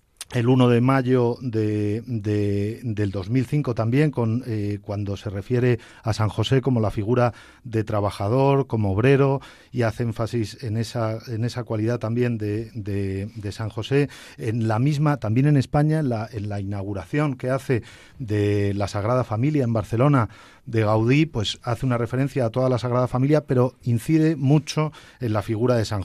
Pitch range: 110-140 Hz